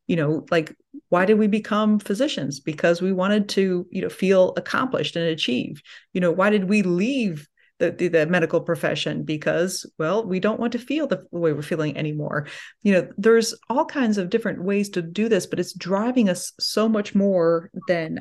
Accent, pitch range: American, 165-210 Hz